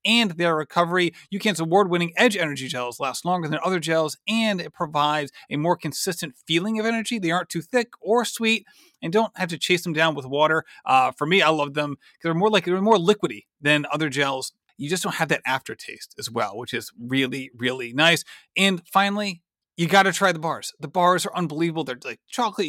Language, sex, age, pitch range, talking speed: English, male, 30-49, 150-200 Hz, 215 wpm